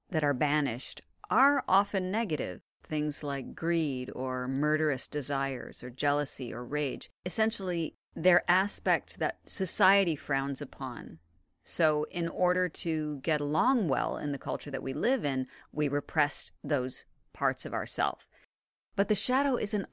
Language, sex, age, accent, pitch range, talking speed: English, female, 40-59, American, 140-175 Hz, 140 wpm